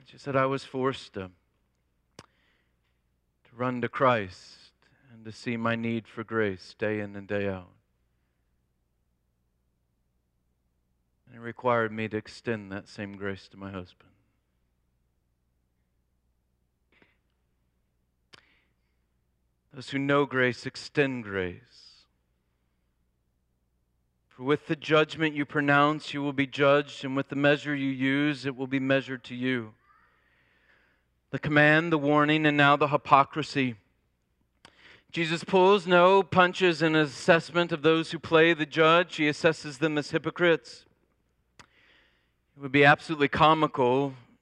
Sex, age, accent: male, 40-59, American